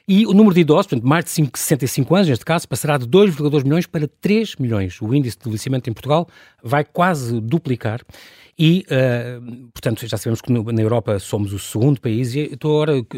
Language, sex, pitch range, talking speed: Portuguese, male, 120-170 Hz, 205 wpm